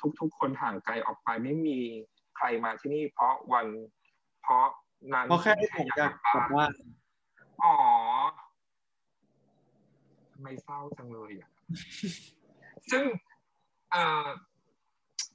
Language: Thai